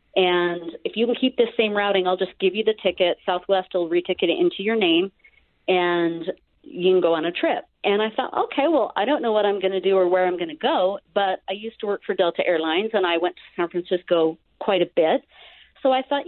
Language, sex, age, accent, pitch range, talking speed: English, female, 40-59, American, 175-220 Hz, 245 wpm